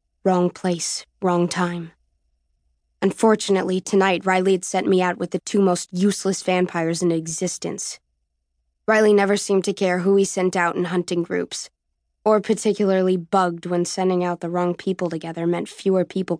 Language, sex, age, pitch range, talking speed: English, female, 20-39, 170-195 Hz, 160 wpm